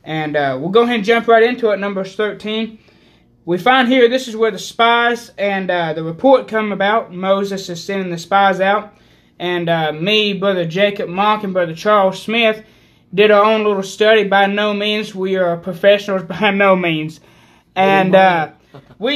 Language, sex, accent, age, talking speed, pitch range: English, male, American, 20-39, 185 wpm, 180-220 Hz